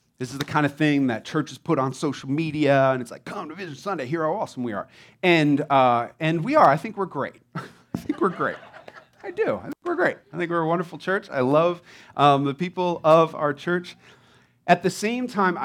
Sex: male